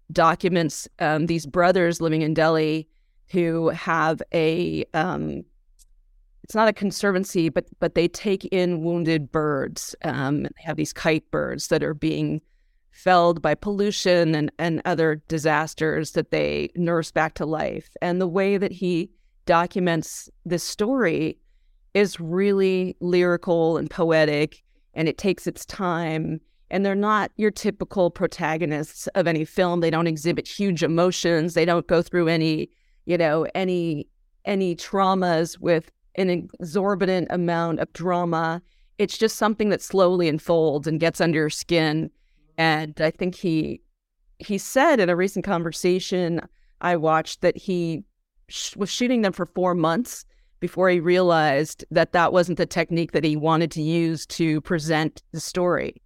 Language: English